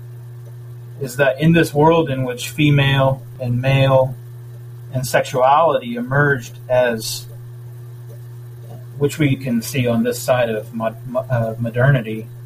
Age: 40-59